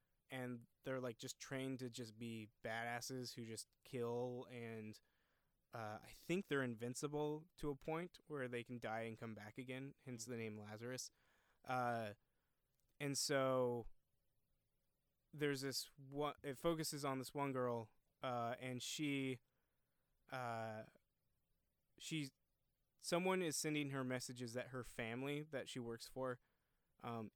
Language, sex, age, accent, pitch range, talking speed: English, male, 20-39, American, 120-140 Hz, 130 wpm